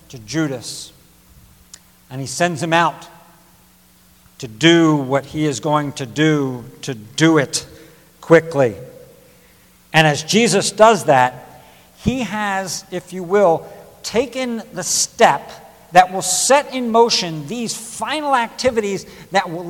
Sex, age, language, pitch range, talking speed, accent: male, 60-79, English, 145-200 Hz, 130 wpm, American